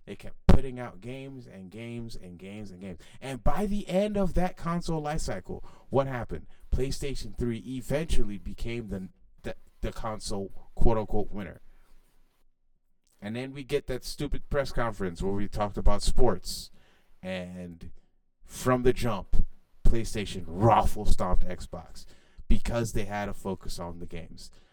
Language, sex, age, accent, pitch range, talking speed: English, male, 30-49, American, 95-150 Hz, 150 wpm